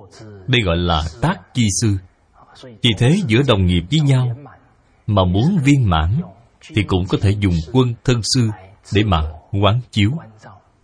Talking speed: 160 wpm